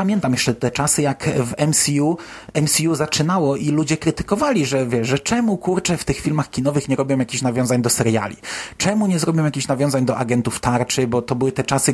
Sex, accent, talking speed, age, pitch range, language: male, native, 200 wpm, 30-49, 125-155 Hz, Polish